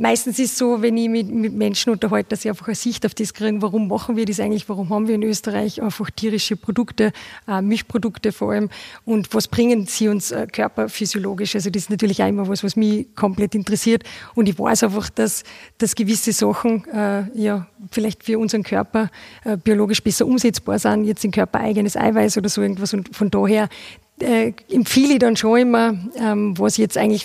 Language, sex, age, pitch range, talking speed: German, female, 30-49, 205-225 Hz, 205 wpm